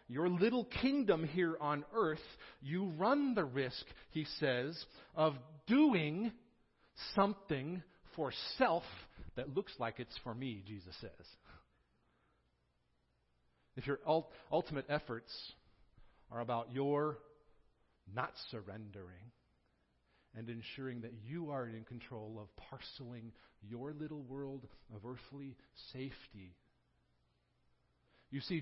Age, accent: 50-69, American